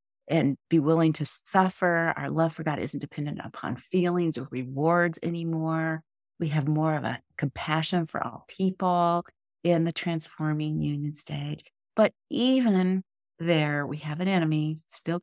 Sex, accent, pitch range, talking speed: female, American, 155-180 Hz, 150 wpm